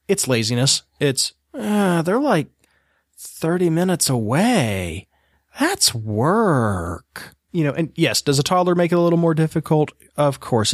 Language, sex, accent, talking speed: English, male, American, 145 wpm